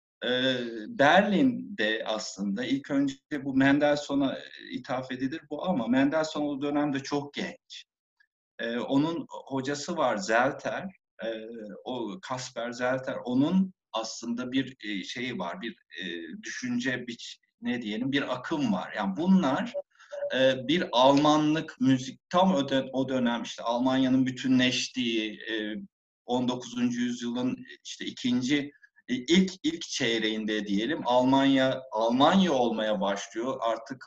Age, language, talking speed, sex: 50-69, Turkish, 120 wpm, male